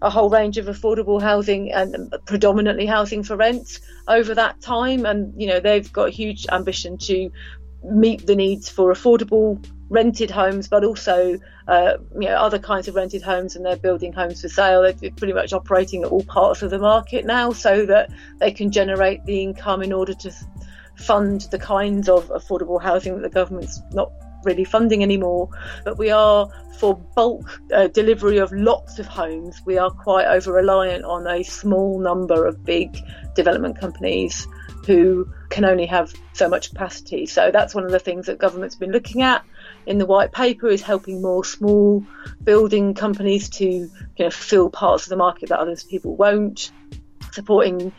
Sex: female